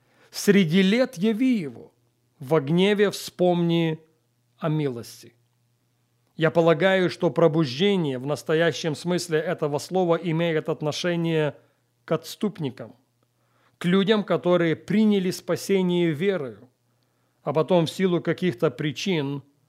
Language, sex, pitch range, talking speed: Russian, male, 135-180 Hz, 105 wpm